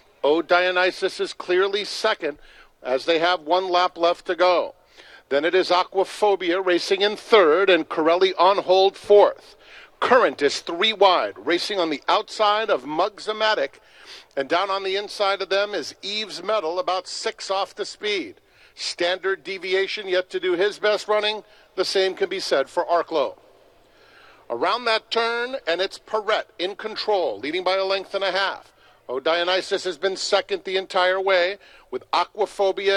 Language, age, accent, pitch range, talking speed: English, 50-69, American, 185-200 Hz, 165 wpm